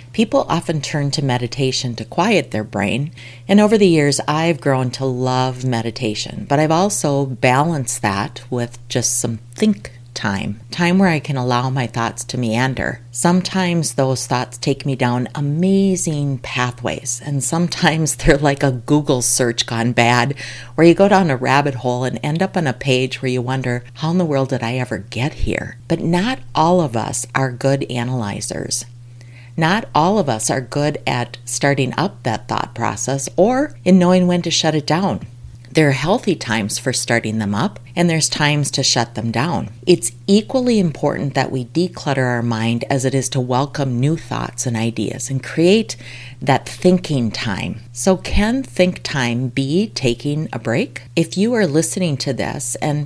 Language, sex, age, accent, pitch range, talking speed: English, female, 50-69, American, 120-155 Hz, 180 wpm